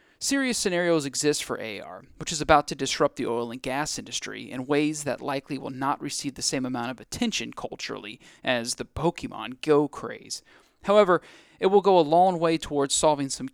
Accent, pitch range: American, 135-175 Hz